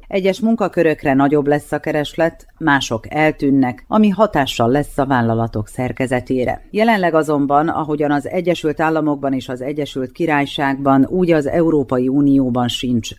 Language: Hungarian